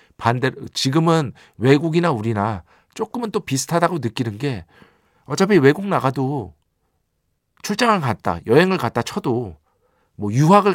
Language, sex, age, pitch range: Korean, male, 50-69, 110-165 Hz